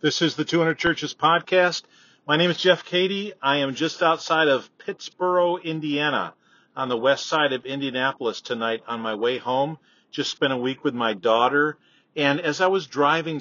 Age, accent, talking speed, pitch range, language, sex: 40-59, American, 185 wpm, 120-155 Hz, English, male